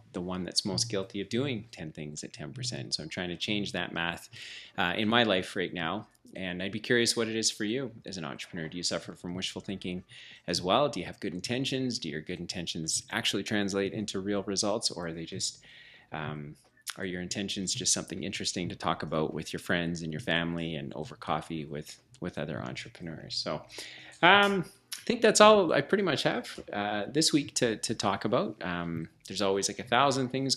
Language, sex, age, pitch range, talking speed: English, male, 30-49, 90-115 Hz, 215 wpm